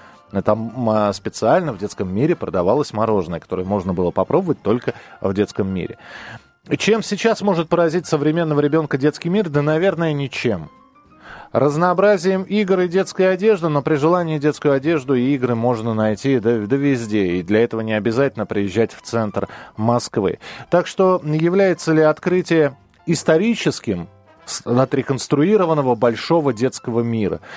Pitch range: 110-160 Hz